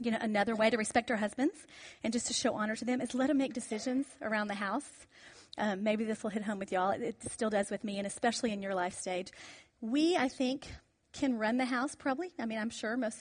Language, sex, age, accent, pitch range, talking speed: English, female, 40-59, American, 190-240 Hz, 255 wpm